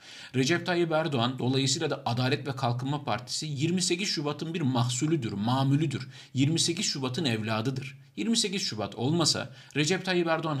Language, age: Turkish, 50-69